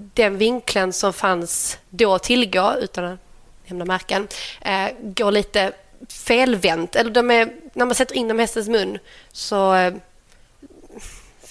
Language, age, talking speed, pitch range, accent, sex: Swedish, 30-49, 135 wpm, 180-205 Hz, native, female